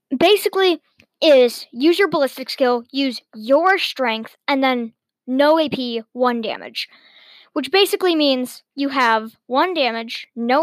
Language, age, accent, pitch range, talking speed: English, 10-29, American, 235-290 Hz, 130 wpm